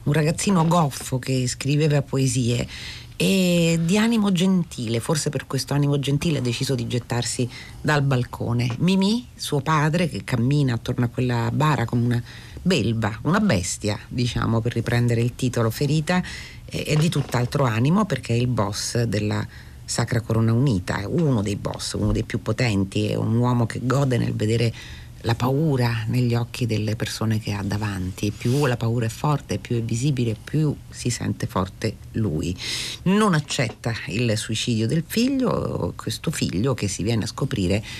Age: 40-59